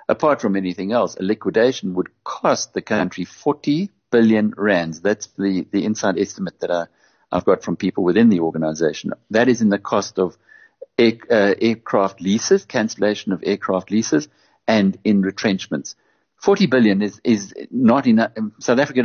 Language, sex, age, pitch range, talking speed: English, male, 60-79, 95-125 Hz, 165 wpm